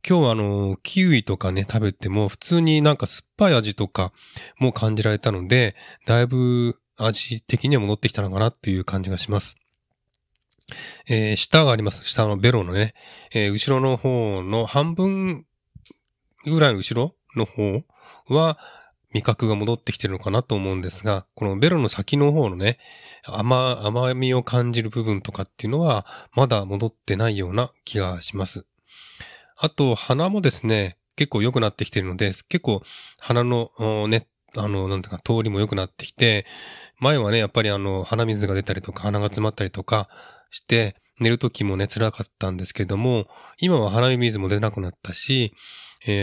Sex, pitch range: male, 100-125 Hz